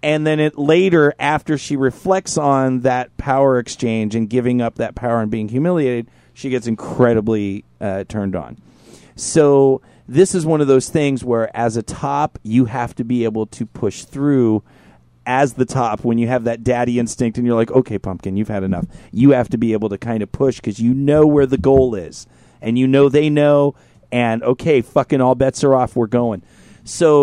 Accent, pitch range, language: American, 115-140 Hz, English